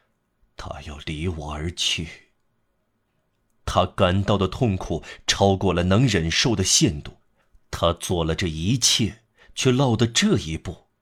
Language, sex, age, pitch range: Chinese, male, 30-49, 90-115 Hz